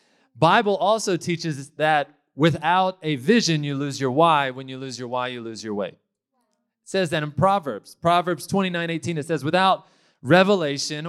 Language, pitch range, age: English, 135-170 Hz, 30-49